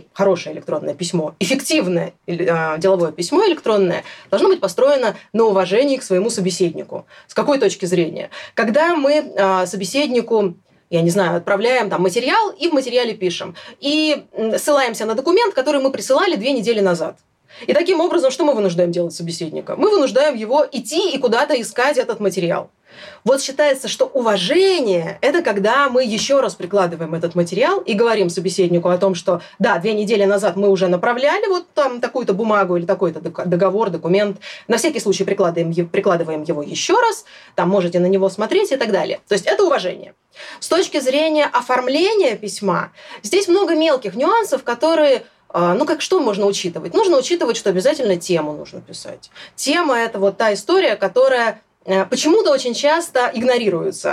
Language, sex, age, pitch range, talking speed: Russian, female, 20-39, 190-290 Hz, 160 wpm